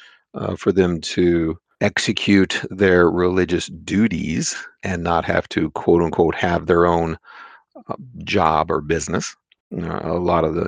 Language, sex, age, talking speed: English, male, 40-59, 150 wpm